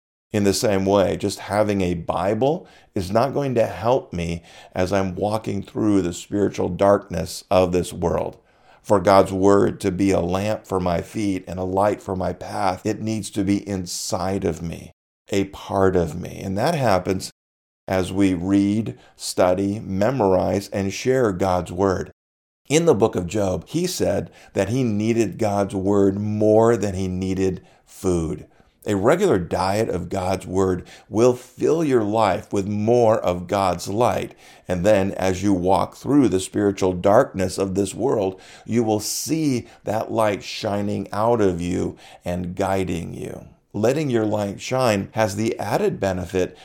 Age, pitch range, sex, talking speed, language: 50-69, 90-105 Hz, male, 165 wpm, English